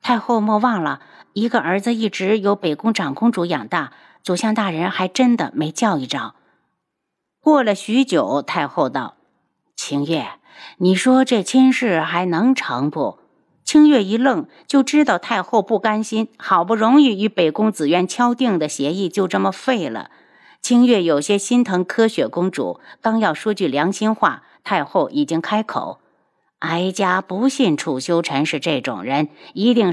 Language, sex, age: Chinese, female, 50-69